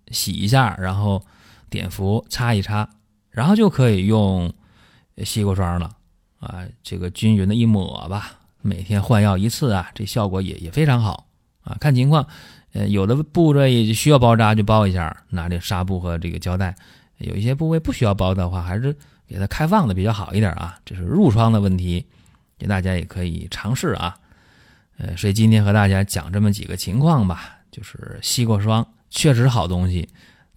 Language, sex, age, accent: Chinese, male, 30-49, native